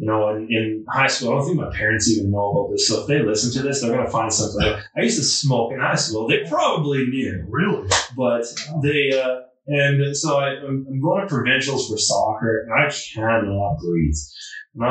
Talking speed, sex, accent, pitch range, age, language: 215 wpm, male, American, 110-135 Hz, 20-39, English